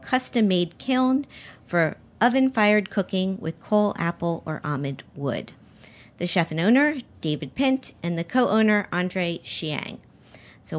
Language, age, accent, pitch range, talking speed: English, 40-59, American, 155-205 Hz, 130 wpm